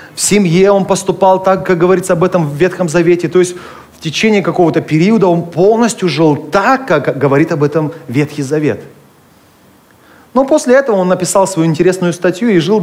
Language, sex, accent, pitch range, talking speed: Russian, male, native, 130-185 Hz, 180 wpm